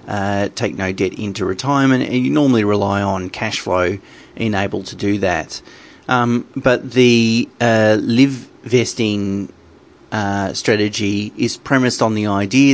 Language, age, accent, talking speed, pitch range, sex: English, 30-49, Australian, 140 wpm, 100-120 Hz, male